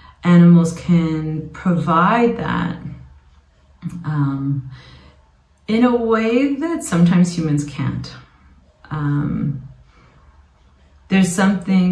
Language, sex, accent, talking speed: English, female, American, 75 wpm